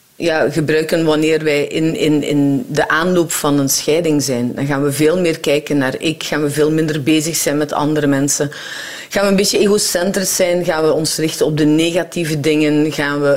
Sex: female